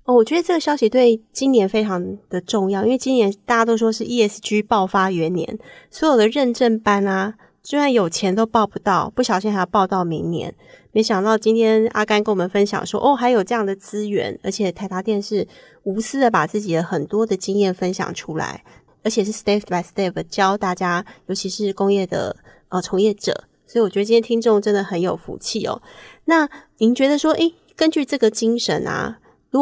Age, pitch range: 20-39, 195-235 Hz